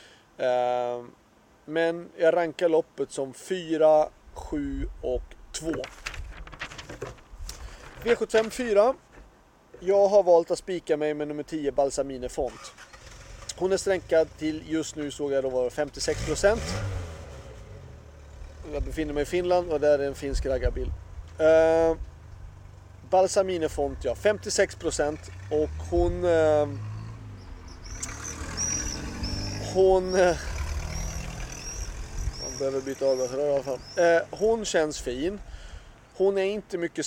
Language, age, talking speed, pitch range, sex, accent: Swedish, 30-49, 110 wpm, 110-165 Hz, male, native